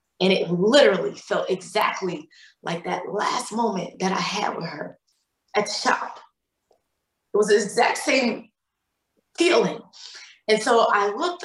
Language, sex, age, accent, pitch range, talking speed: English, female, 20-39, American, 195-240 Hz, 140 wpm